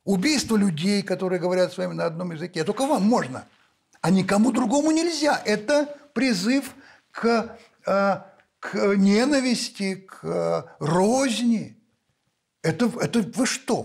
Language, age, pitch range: Russian, 60-79, 185-265 Hz